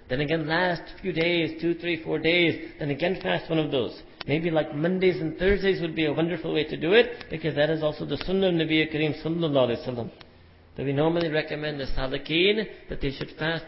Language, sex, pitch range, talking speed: English, male, 150-175 Hz, 205 wpm